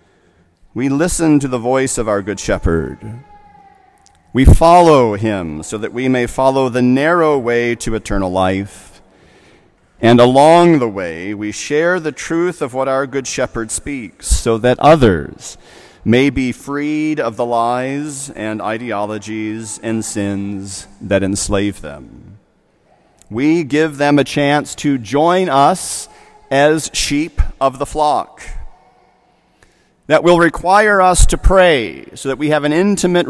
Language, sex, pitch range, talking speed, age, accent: English, male, 105-155 Hz, 140 wpm, 40-59, American